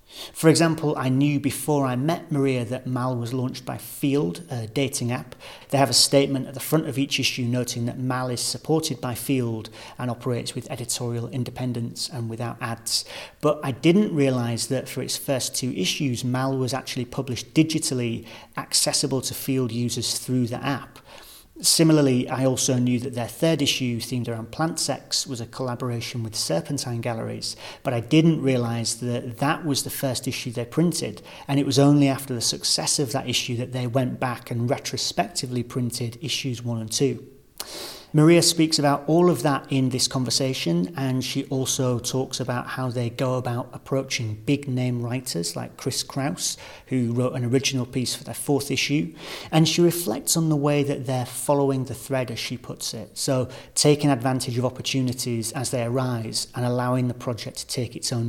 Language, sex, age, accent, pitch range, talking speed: English, male, 40-59, British, 120-140 Hz, 185 wpm